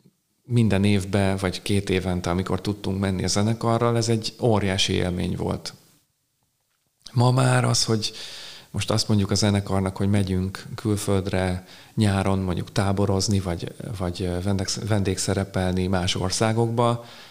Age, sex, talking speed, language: 30-49, male, 120 wpm, Hungarian